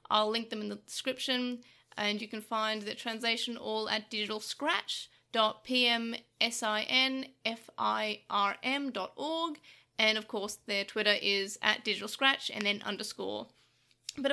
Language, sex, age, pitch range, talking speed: English, female, 30-49, 215-290 Hz, 115 wpm